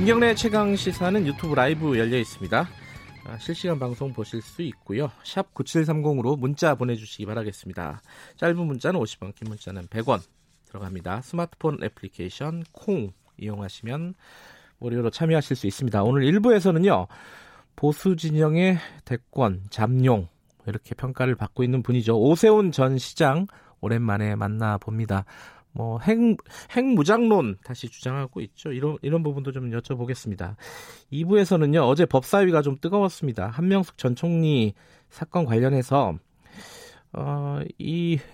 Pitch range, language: 115-165 Hz, Korean